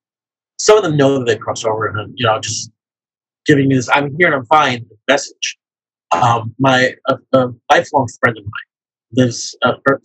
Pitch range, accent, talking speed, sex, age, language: 120-150 Hz, American, 190 wpm, male, 30-49, English